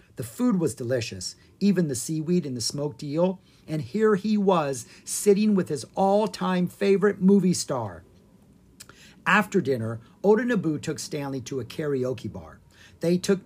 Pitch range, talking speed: 115-180 Hz, 150 wpm